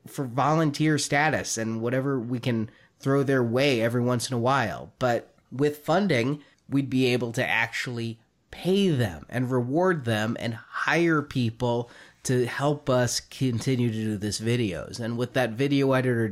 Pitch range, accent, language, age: 120-150 Hz, American, English, 30-49